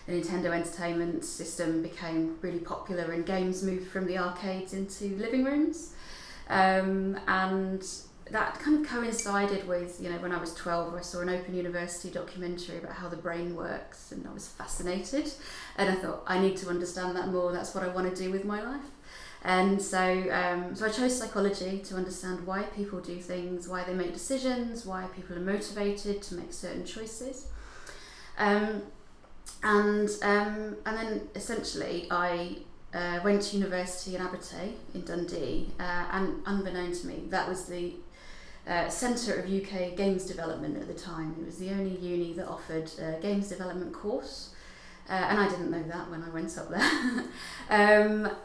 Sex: female